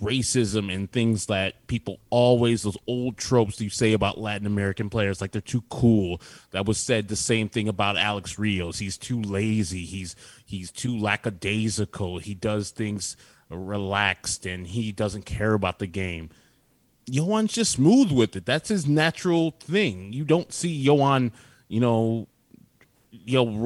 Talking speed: 155 wpm